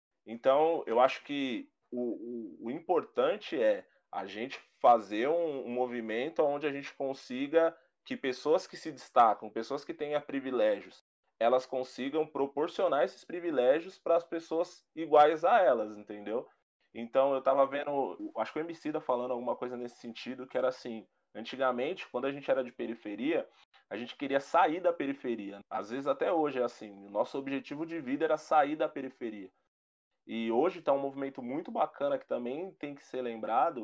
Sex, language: male, Portuguese